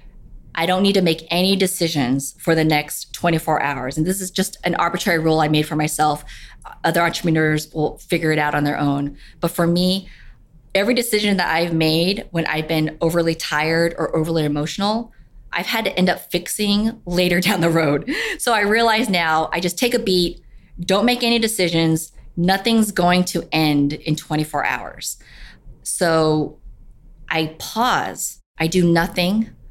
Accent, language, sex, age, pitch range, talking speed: American, English, female, 20-39, 150-180 Hz, 170 wpm